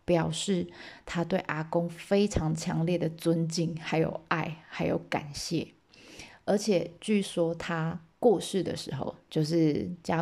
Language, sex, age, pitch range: Chinese, female, 20-39, 170-215 Hz